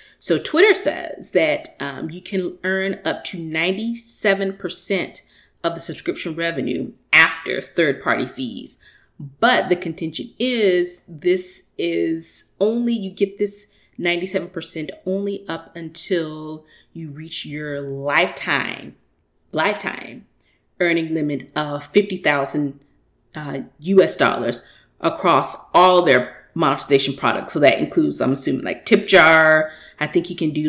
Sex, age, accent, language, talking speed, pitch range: female, 30-49, American, English, 125 wpm, 150-190 Hz